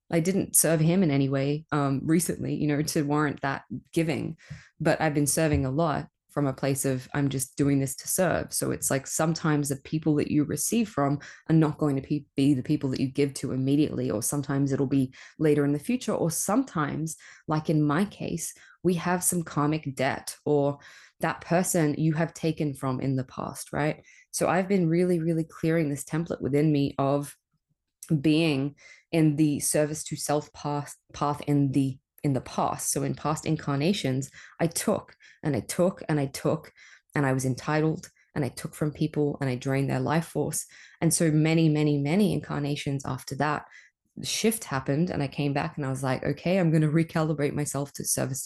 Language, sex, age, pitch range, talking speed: English, female, 20-39, 140-165 Hz, 200 wpm